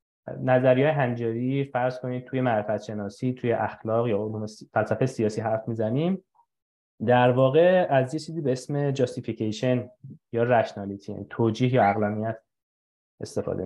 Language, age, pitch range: Persian, 20-39, 110-145 Hz